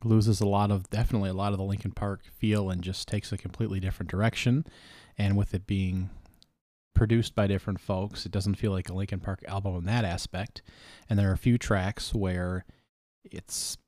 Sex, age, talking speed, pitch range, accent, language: male, 30-49, 200 wpm, 95-115 Hz, American, English